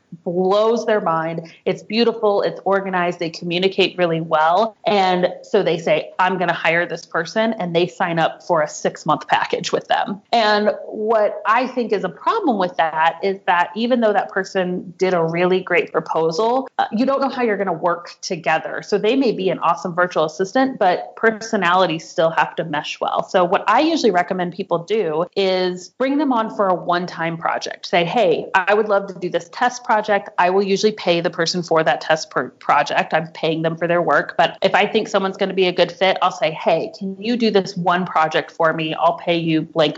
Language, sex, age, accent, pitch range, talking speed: English, female, 30-49, American, 165-205 Hz, 215 wpm